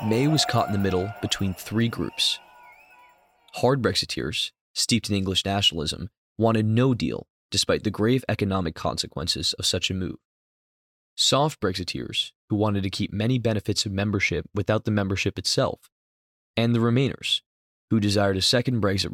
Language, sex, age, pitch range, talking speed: English, male, 20-39, 95-115 Hz, 155 wpm